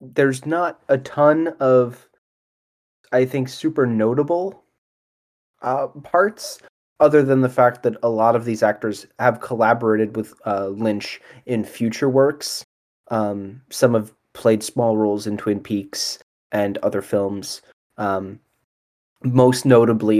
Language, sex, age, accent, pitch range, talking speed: English, male, 20-39, American, 110-135 Hz, 130 wpm